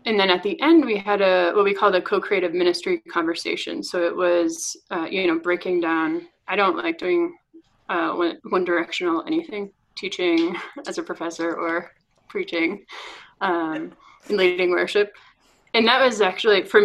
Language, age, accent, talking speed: English, 20-39, American, 165 wpm